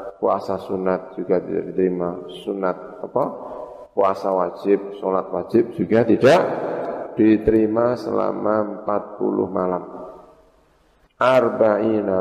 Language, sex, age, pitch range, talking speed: Indonesian, male, 50-69, 105-125 Hz, 90 wpm